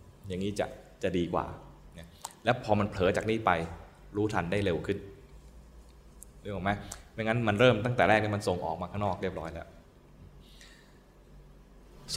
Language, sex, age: Thai, male, 20-39